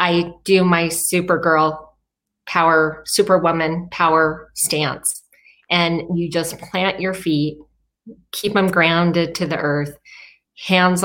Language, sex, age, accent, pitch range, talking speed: English, female, 30-49, American, 150-175 Hz, 115 wpm